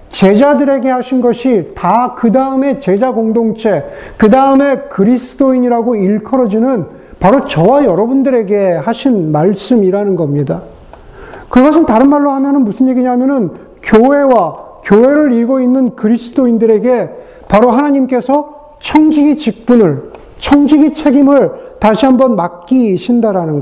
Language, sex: Korean, male